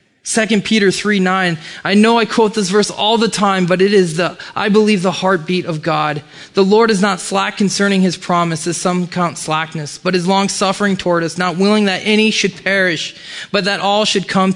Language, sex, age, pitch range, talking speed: English, male, 20-39, 175-215 Hz, 210 wpm